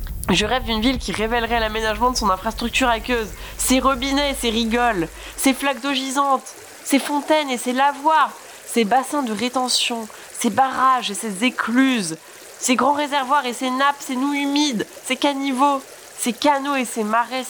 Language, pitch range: French, 185-255 Hz